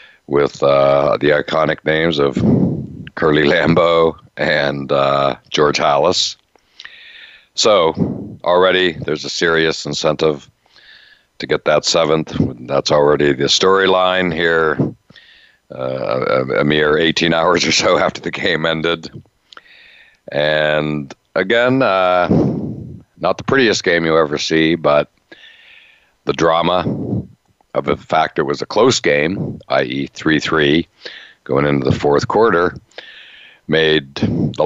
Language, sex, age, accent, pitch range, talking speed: English, male, 60-79, American, 70-80 Hz, 120 wpm